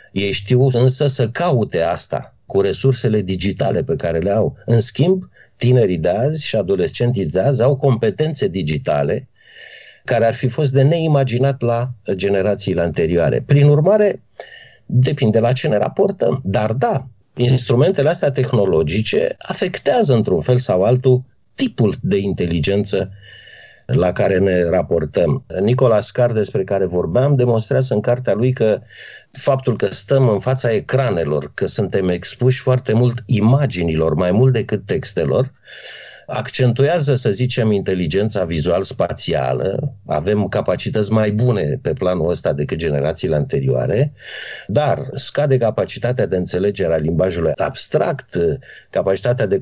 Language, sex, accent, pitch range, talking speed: Romanian, male, native, 100-140 Hz, 135 wpm